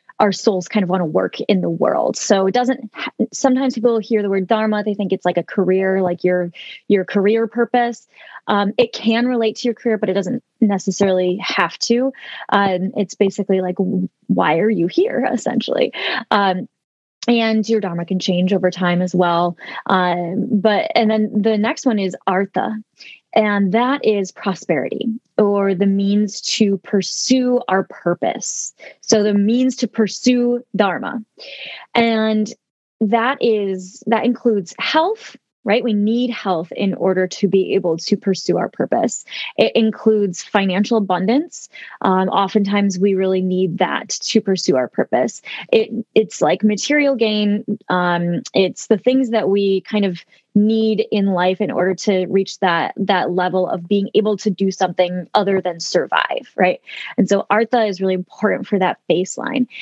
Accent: American